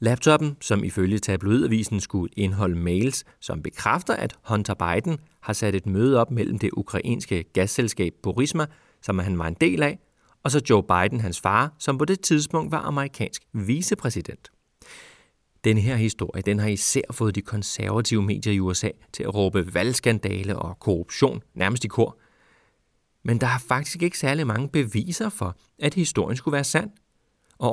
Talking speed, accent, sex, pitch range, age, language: 165 wpm, native, male, 100-140 Hz, 30-49, Danish